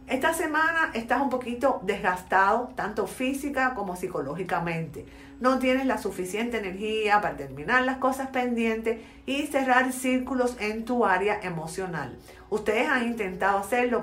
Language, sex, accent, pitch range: Spanish, female, American, 195-255 Hz